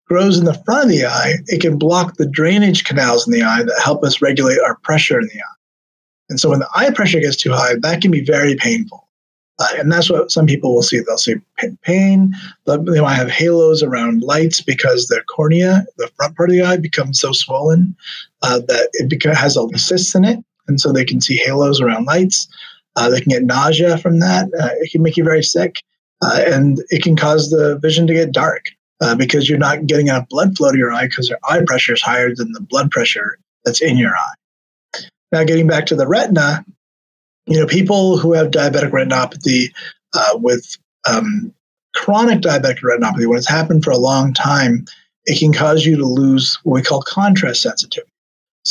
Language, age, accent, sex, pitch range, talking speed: English, 30-49, American, male, 140-180 Hz, 210 wpm